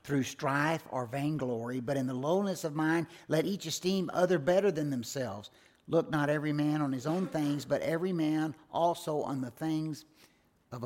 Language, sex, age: English, male, 50-69